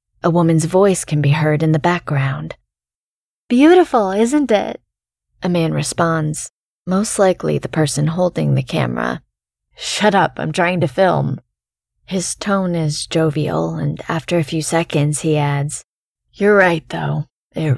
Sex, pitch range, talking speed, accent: female, 150-185 Hz, 145 wpm, American